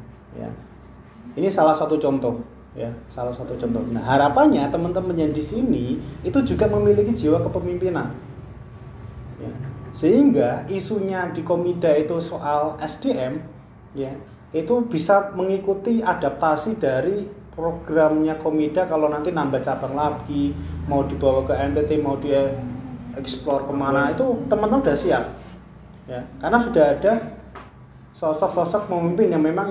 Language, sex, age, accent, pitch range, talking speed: Indonesian, male, 30-49, native, 135-180 Hz, 125 wpm